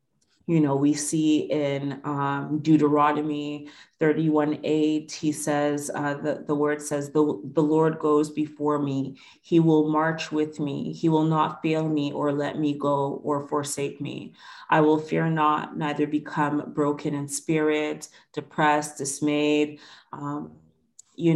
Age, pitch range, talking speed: 30-49, 145-160 Hz, 145 wpm